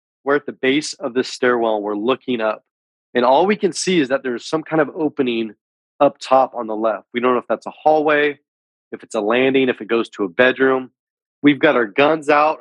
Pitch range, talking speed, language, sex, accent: 120-170 Hz, 235 wpm, English, male, American